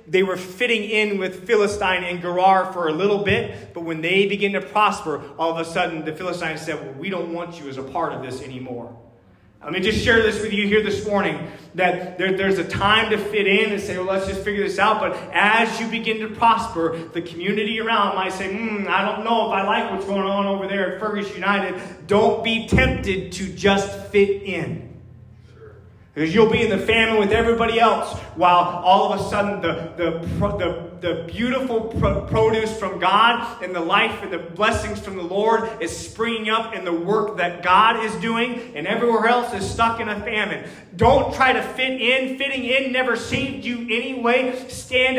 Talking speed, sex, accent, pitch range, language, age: 205 wpm, male, American, 185-250 Hz, English, 30-49